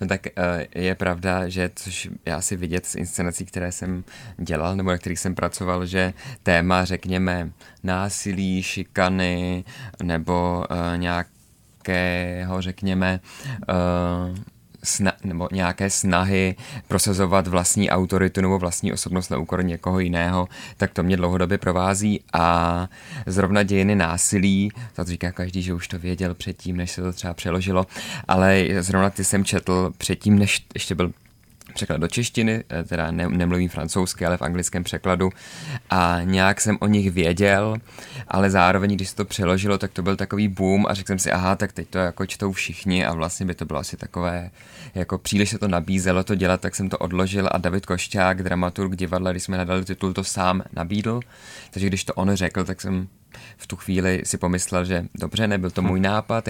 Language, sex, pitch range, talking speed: Czech, male, 90-100 Hz, 170 wpm